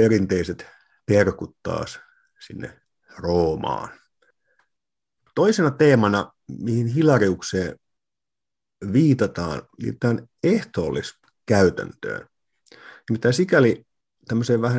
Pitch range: 100-125 Hz